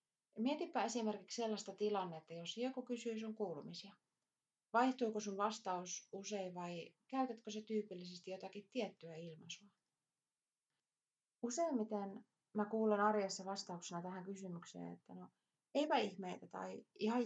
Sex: female